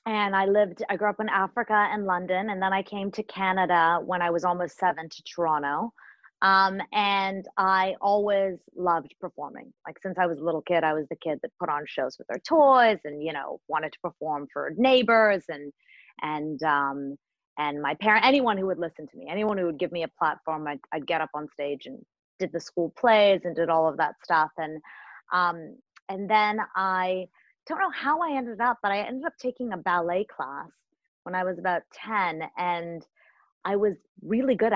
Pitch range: 165-210 Hz